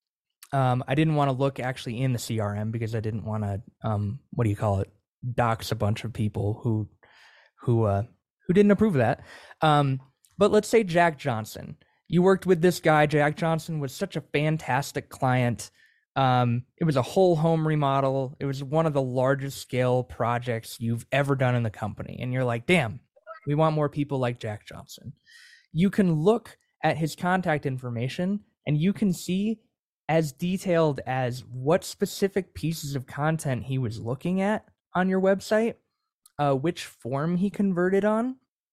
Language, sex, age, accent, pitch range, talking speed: English, male, 20-39, American, 115-165 Hz, 180 wpm